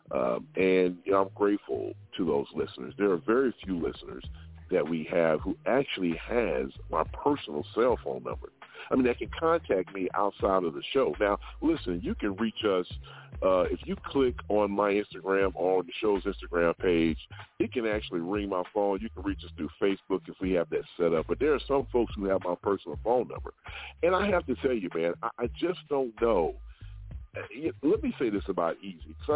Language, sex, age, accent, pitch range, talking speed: English, male, 40-59, American, 90-140 Hz, 200 wpm